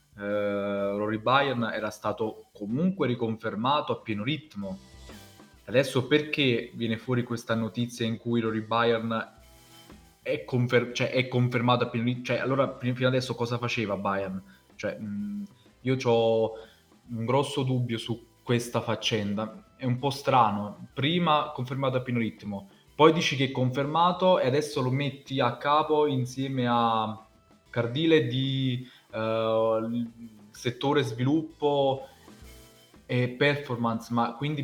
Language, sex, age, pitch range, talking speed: Italian, male, 20-39, 110-130 Hz, 120 wpm